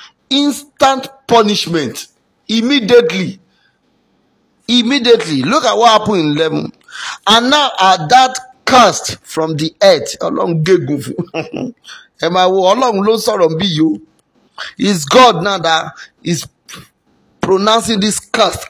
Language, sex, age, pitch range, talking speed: English, male, 50-69, 170-240 Hz, 100 wpm